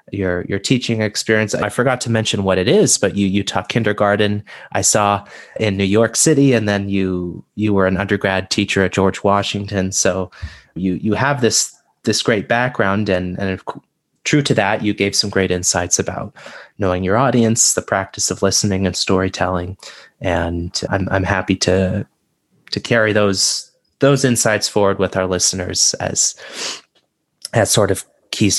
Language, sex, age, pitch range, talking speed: English, male, 30-49, 95-115 Hz, 170 wpm